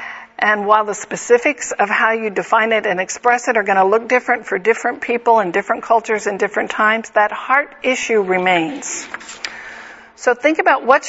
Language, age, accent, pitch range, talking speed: English, 50-69, American, 200-240 Hz, 185 wpm